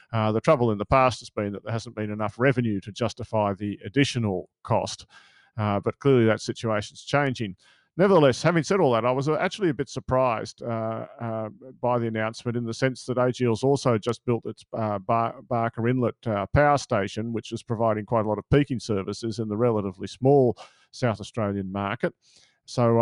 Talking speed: 190 wpm